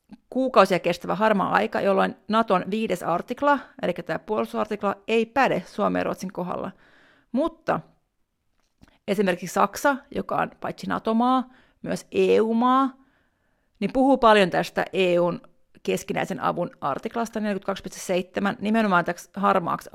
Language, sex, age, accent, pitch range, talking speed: Finnish, female, 30-49, native, 195-235 Hz, 110 wpm